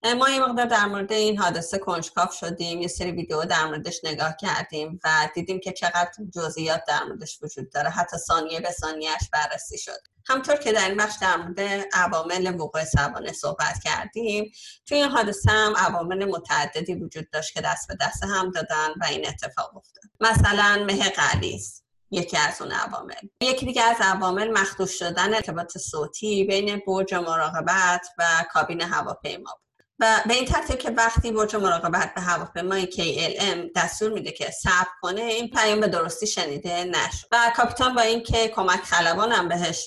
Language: Persian